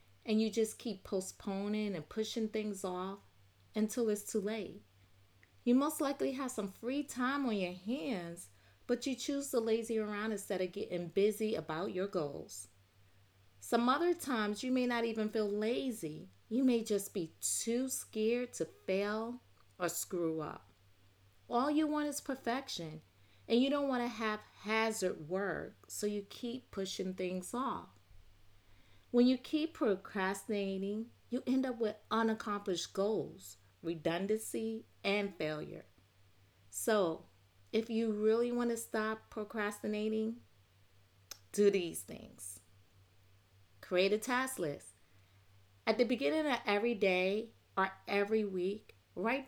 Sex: female